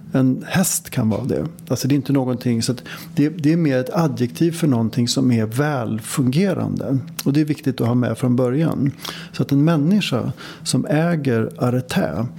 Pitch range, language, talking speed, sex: 125-160 Hz, English, 185 wpm, male